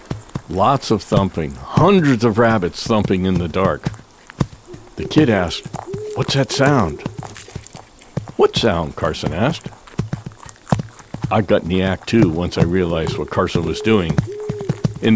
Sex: male